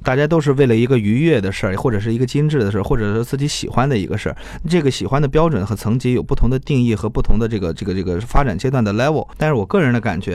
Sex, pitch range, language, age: male, 105-140 Hz, Chinese, 20-39